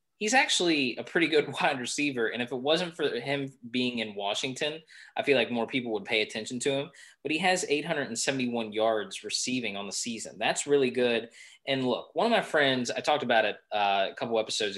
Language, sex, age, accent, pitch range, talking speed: English, male, 20-39, American, 110-145 Hz, 210 wpm